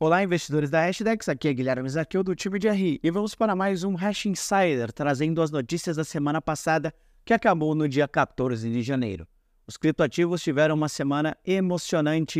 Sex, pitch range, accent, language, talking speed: male, 135-170 Hz, Brazilian, Portuguese, 185 wpm